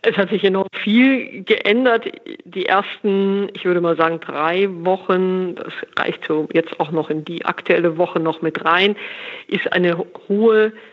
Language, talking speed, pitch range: German, 160 wpm, 170-210 Hz